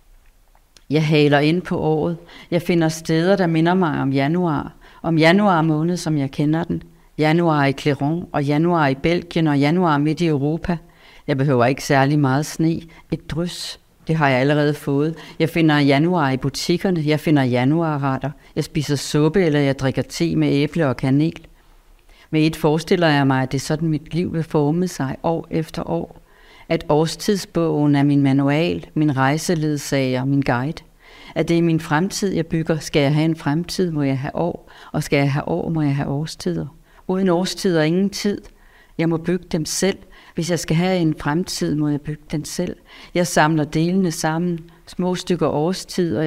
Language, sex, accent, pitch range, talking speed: Danish, female, native, 140-170 Hz, 185 wpm